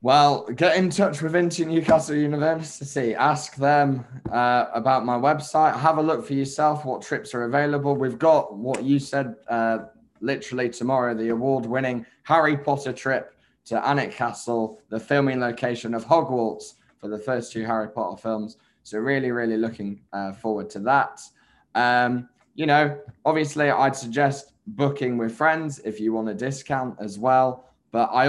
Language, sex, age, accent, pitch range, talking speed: English, male, 10-29, British, 110-140 Hz, 160 wpm